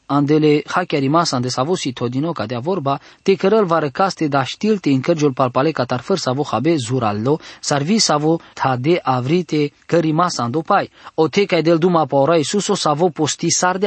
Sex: male